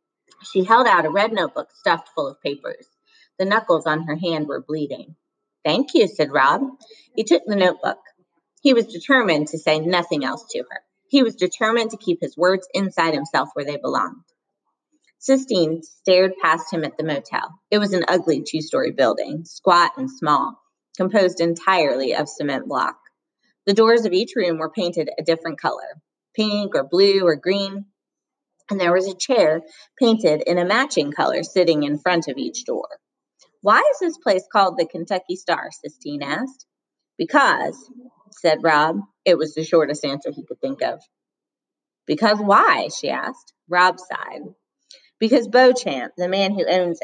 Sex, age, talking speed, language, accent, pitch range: female, 30-49, 170 wpm, English, American, 165-245 Hz